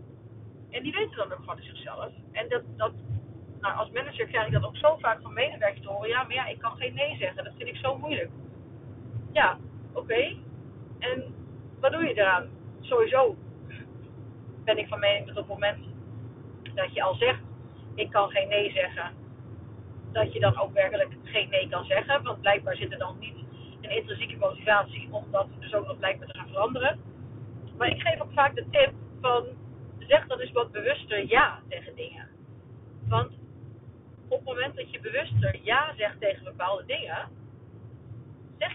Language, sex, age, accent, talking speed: Dutch, female, 40-59, Dutch, 185 wpm